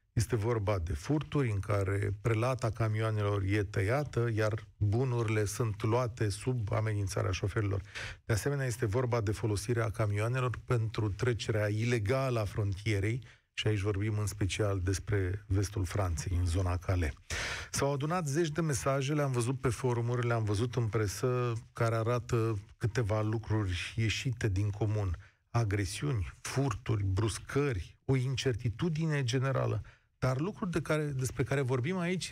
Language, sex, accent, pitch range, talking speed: Romanian, male, native, 105-135 Hz, 135 wpm